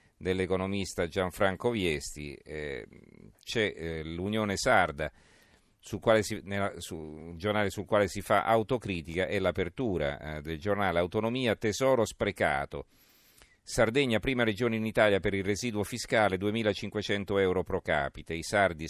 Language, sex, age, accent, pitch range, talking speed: Italian, male, 40-59, native, 90-110 Hz, 115 wpm